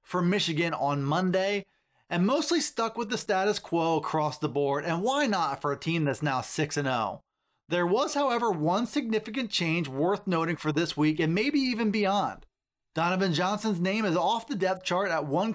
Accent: American